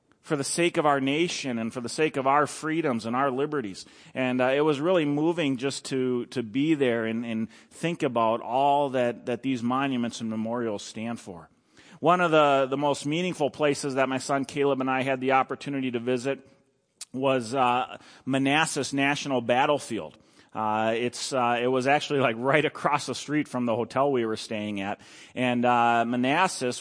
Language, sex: English, male